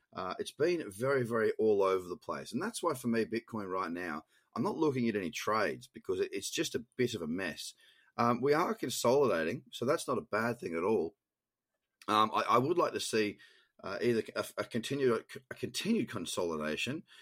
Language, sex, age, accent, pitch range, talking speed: English, male, 30-49, Australian, 110-135 Hz, 195 wpm